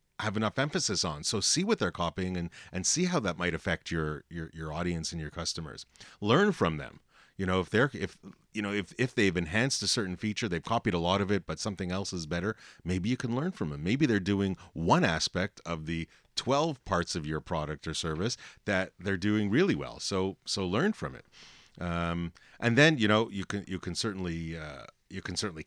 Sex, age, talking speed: male, 30-49, 220 wpm